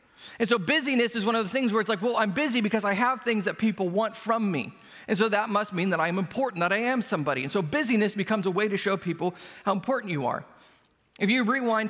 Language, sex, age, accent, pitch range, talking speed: English, male, 40-59, American, 185-240 Hz, 255 wpm